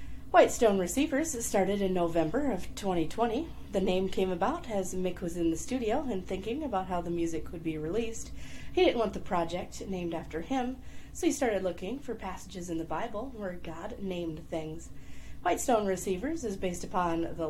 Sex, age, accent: female, 30-49, American